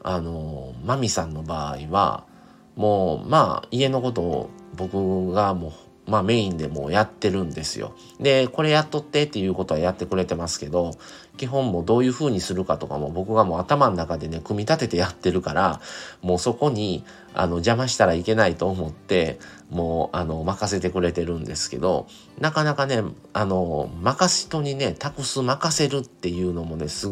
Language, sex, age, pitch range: Japanese, male, 40-59, 85-115 Hz